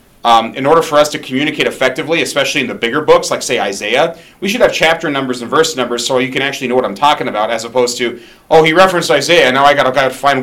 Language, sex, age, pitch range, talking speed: English, male, 30-49, 125-150 Hz, 265 wpm